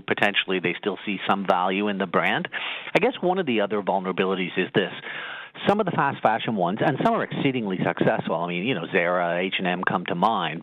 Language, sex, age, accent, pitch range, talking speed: English, male, 50-69, American, 95-115 Hz, 215 wpm